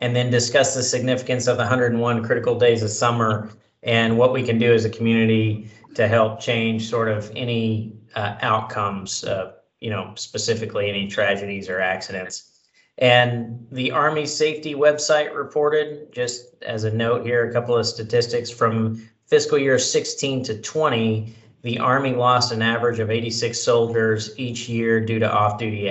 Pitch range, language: 105-125 Hz, English